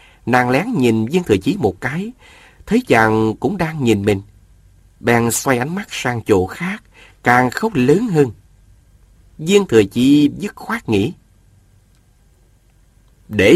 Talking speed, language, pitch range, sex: 140 wpm, Vietnamese, 100-145 Hz, male